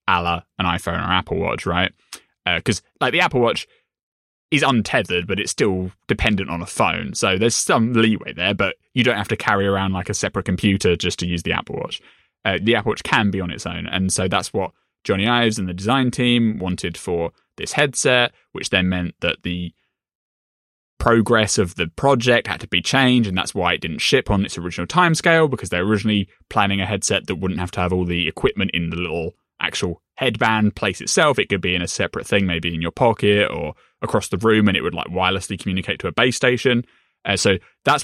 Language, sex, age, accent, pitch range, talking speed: English, male, 20-39, British, 90-115 Hz, 220 wpm